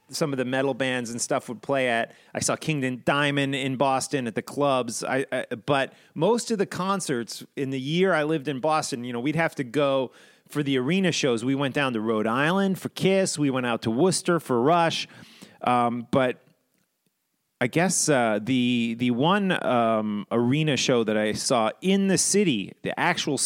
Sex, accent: male, American